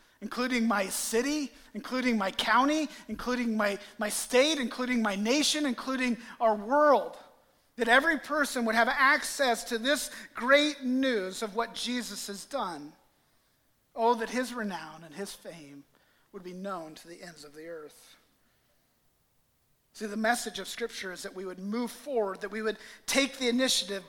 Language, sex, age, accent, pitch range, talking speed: English, male, 40-59, American, 190-245 Hz, 160 wpm